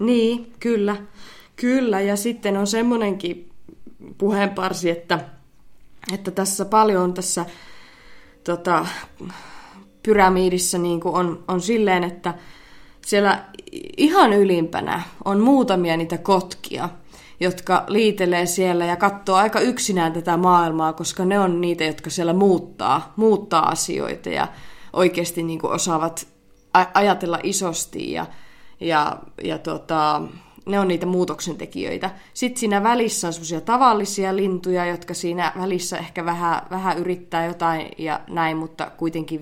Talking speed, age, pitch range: 115 wpm, 20-39, 165-195 Hz